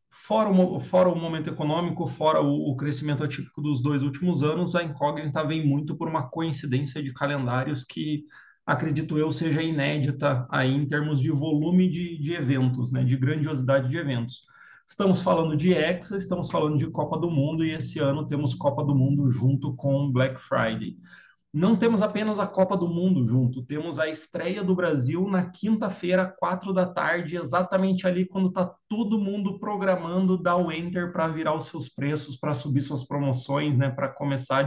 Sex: male